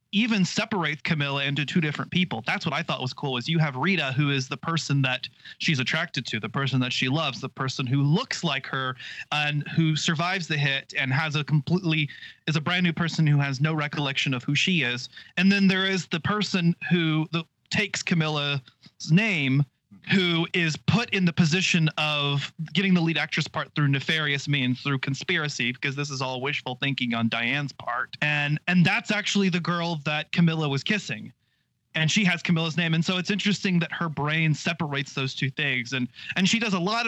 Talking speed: 205 wpm